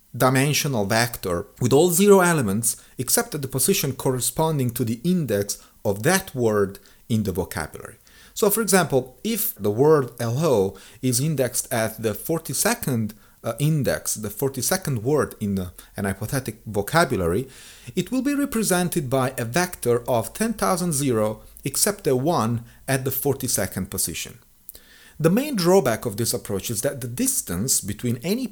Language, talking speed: English, 145 wpm